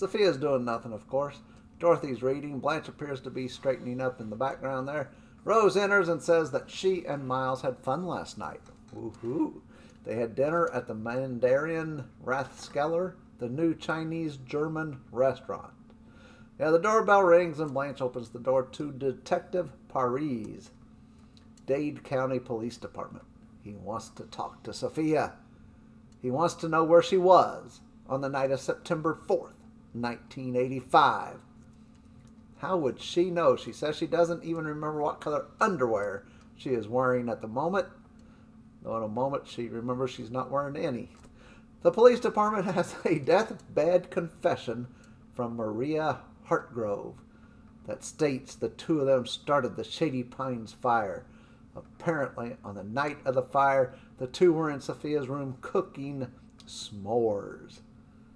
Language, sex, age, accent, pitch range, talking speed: English, male, 50-69, American, 125-165 Hz, 145 wpm